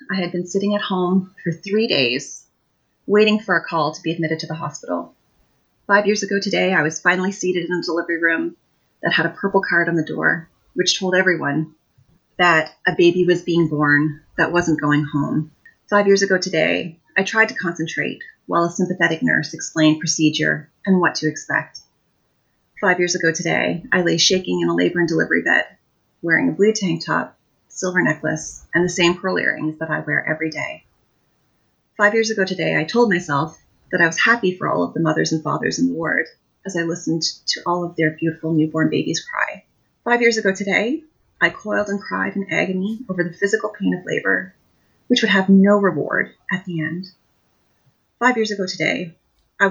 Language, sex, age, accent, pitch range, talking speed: English, female, 30-49, American, 160-195 Hz, 195 wpm